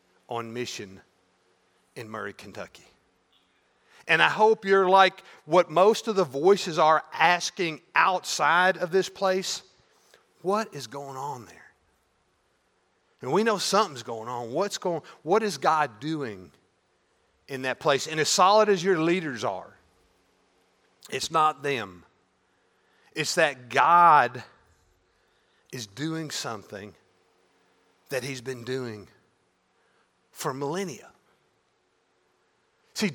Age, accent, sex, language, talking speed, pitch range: 50-69, American, male, English, 115 wpm, 130-180 Hz